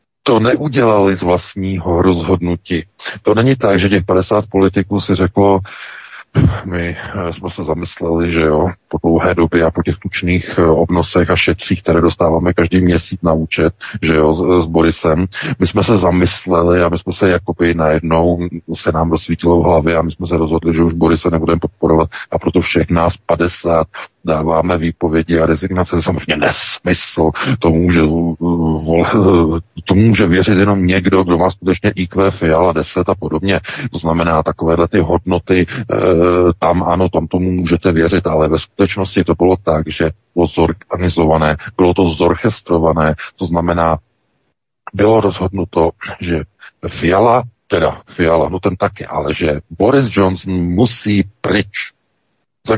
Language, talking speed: Czech, 155 wpm